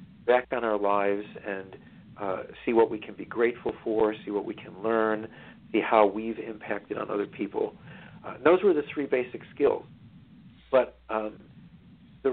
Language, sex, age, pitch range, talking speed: English, male, 50-69, 110-155 Hz, 170 wpm